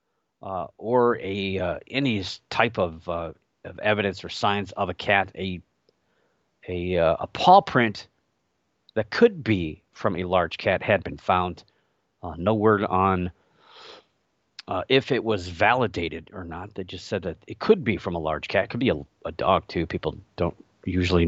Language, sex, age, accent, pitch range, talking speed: English, male, 40-59, American, 90-125 Hz, 180 wpm